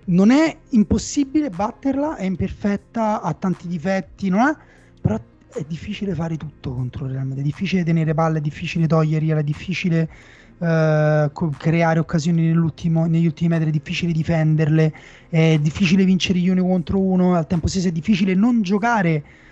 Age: 30-49